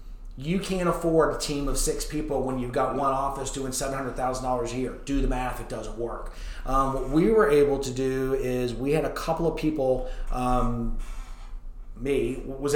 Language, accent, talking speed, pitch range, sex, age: English, American, 190 wpm, 120-145 Hz, male, 30-49